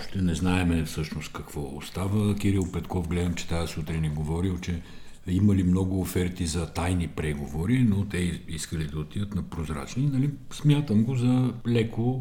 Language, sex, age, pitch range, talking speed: Bulgarian, male, 50-69, 85-120 Hz, 160 wpm